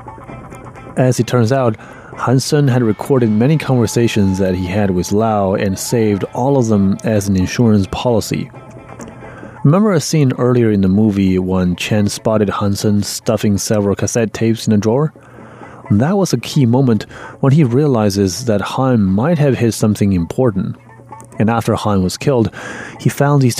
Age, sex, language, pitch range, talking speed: 30-49, male, English, 100-125 Hz, 165 wpm